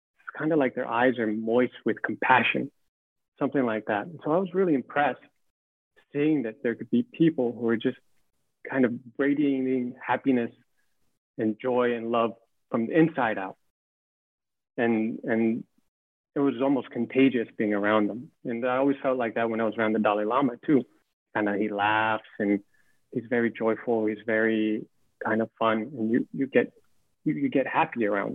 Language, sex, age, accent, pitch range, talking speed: English, male, 30-49, American, 110-130 Hz, 180 wpm